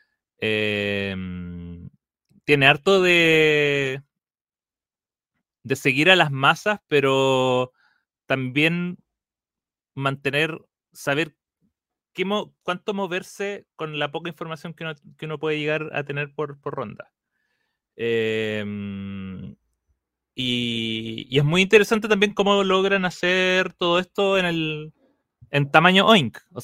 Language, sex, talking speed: Spanish, male, 115 wpm